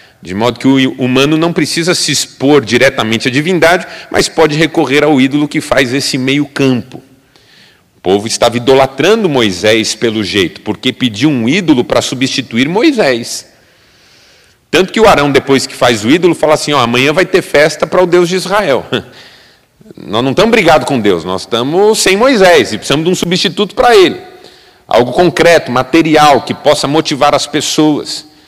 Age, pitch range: 40-59, 135-180 Hz